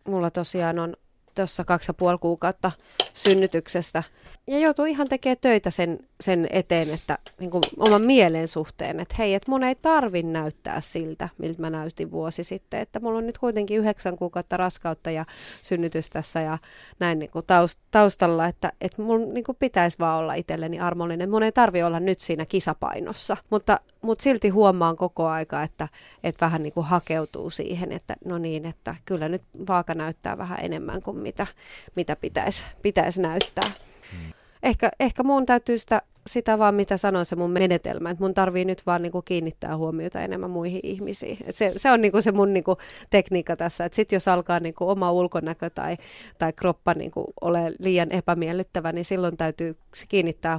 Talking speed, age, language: 170 wpm, 30-49, Finnish